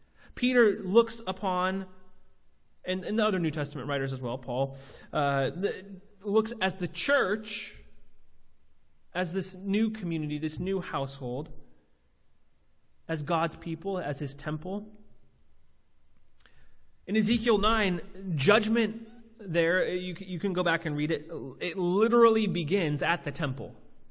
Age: 30-49